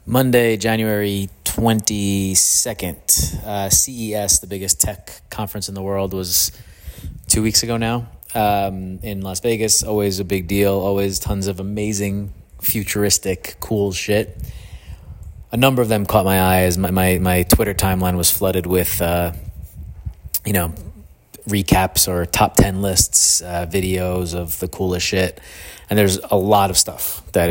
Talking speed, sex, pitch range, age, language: 150 wpm, male, 90-105 Hz, 30-49, English